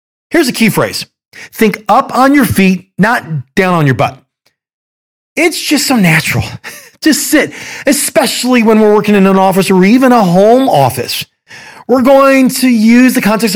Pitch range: 155-230 Hz